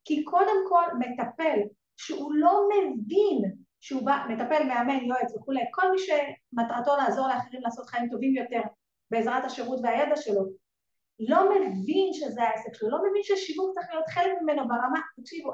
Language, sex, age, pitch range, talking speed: Hebrew, female, 30-49, 240-360 Hz, 155 wpm